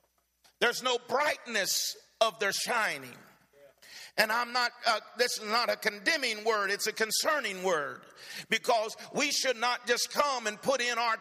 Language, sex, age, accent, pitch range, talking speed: English, male, 50-69, American, 215-270 Hz, 160 wpm